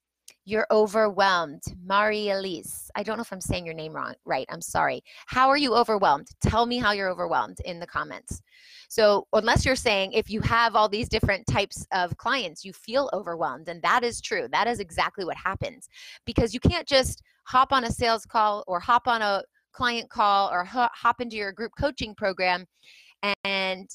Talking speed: 190 wpm